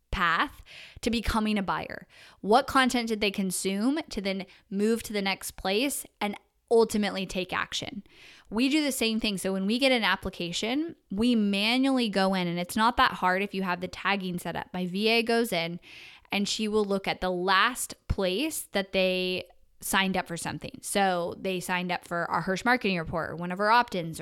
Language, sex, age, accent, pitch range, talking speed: English, female, 10-29, American, 185-230 Hz, 200 wpm